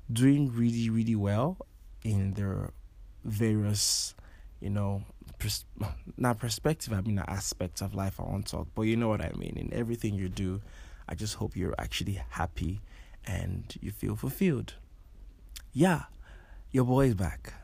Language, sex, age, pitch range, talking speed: English, male, 20-39, 90-110 Hz, 155 wpm